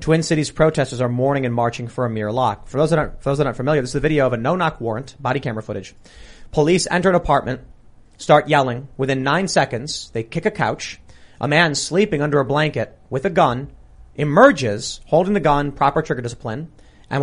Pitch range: 130-180 Hz